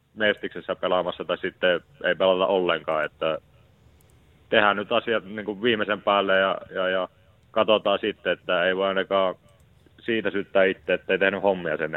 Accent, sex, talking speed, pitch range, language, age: native, male, 155 wpm, 95-110 Hz, Finnish, 30-49